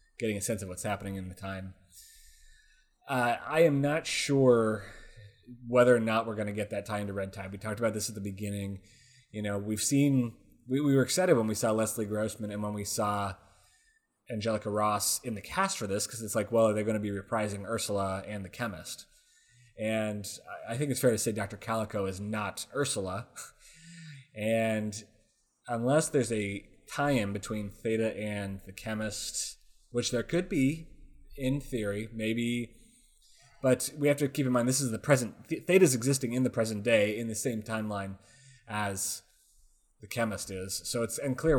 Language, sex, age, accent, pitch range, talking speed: English, male, 20-39, American, 100-125 Hz, 185 wpm